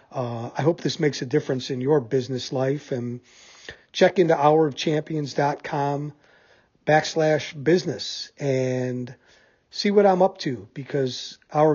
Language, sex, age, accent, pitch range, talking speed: English, male, 40-59, American, 125-155 Hz, 130 wpm